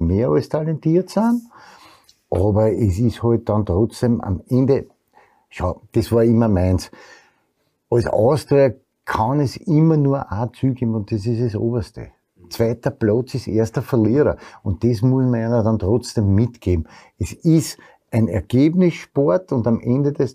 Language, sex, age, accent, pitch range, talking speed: German, male, 60-79, Austrian, 105-135 Hz, 150 wpm